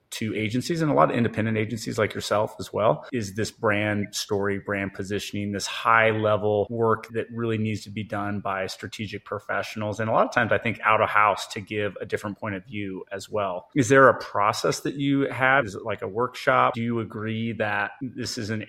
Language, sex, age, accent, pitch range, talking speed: English, male, 30-49, American, 100-115 Hz, 220 wpm